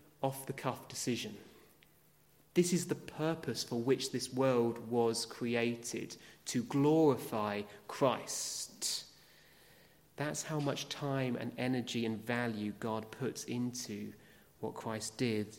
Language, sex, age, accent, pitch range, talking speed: English, male, 30-49, British, 115-150 Hz, 110 wpm